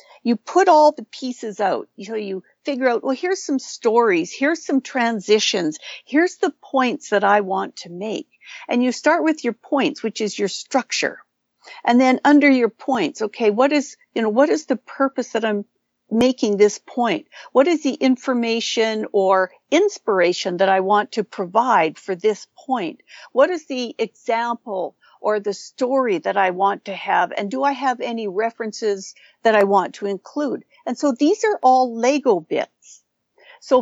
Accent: American